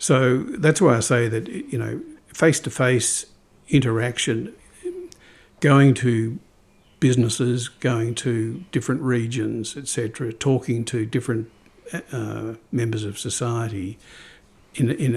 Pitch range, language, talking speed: 115-135 Hz, English, 105 wpm